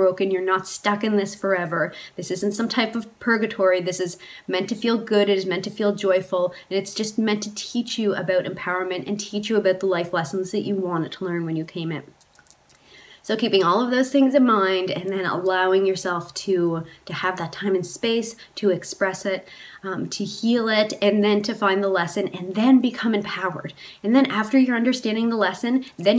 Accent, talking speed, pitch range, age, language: American, 215 wpm, 185-215 Hz, 20-39, English